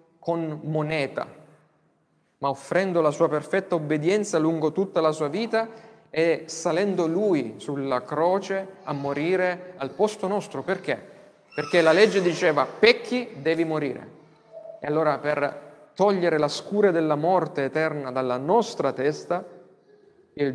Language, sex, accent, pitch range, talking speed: Italian, male, native, 140-185 Hz, 130 wpm